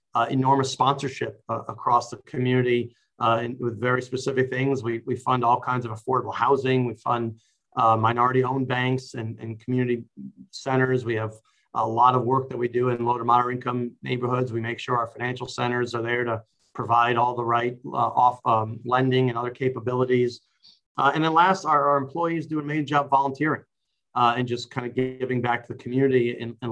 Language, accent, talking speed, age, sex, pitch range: English, American, 200 wpm, 40-59, male, 120-135 Hz